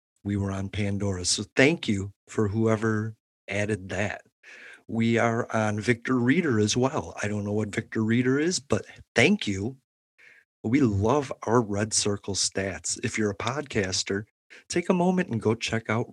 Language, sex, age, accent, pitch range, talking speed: English, male, 40-59, American, 105-120 Hz, 165 wpm